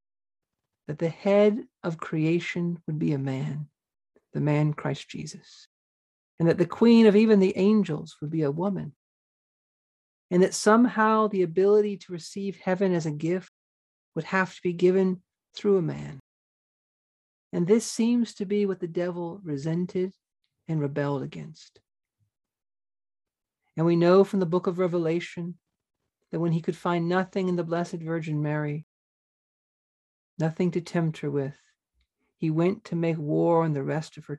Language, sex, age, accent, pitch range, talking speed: English, male, 50-69, American, 150-185 Hz, 155 wpm